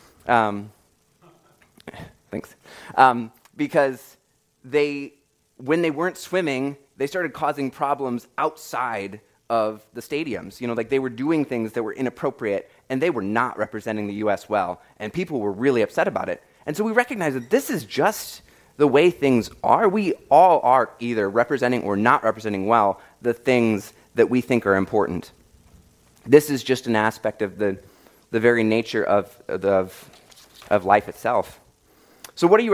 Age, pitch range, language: 20-39, 105-140 Hz, English